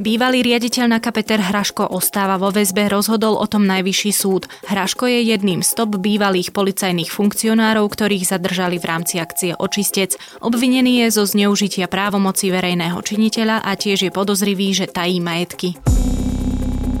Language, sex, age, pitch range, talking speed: Slovak, female, 20-39, 180-205 Hz, 145 wpm